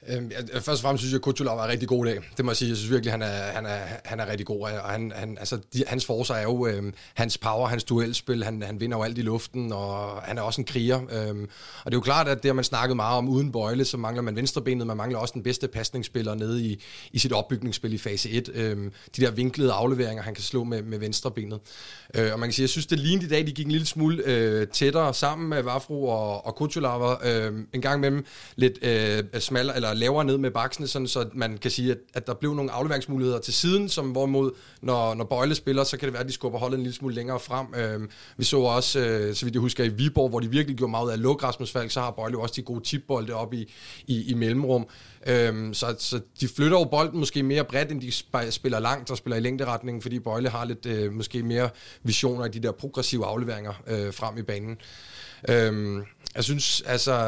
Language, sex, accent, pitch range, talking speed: Danish, male, native, 115-135 Hz, 250 wpm